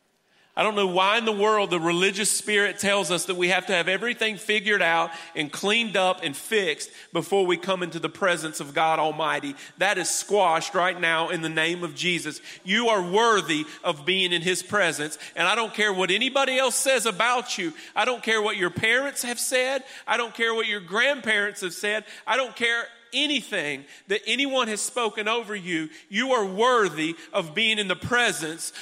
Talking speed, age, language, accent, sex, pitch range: 200 wpm, 40-59, English, American, male, 180-235 Hz